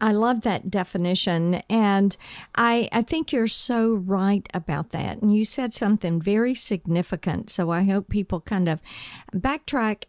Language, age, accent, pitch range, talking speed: English, 50-69, American, 170-220 Hz, 155 wpm